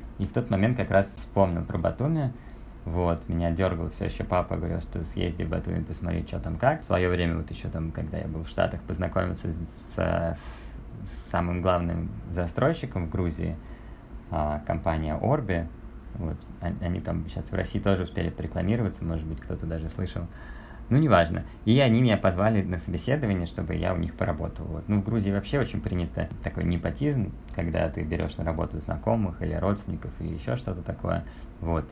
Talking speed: 180 wpm